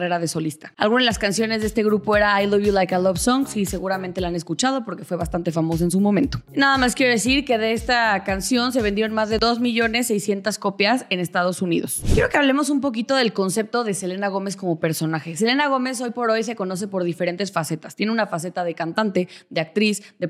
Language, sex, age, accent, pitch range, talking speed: Spanish, female, 20-39, Mexican, 185-225 Hz, 230 wpm